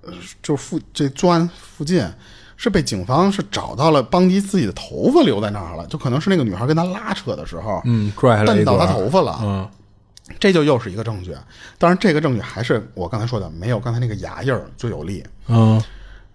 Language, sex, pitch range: Chinese, male, 100-140 Hz